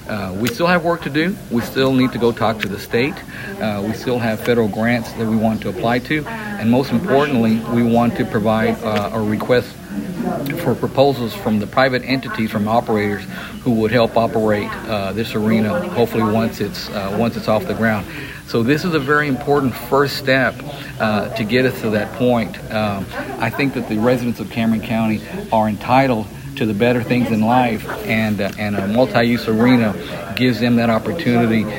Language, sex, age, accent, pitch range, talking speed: English, male, 60-79, American, 110-125 Hz, 195 wpm